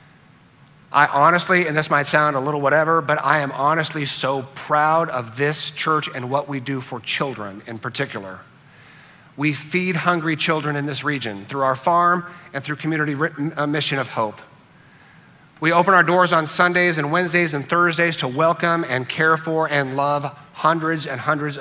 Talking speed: 170 wpm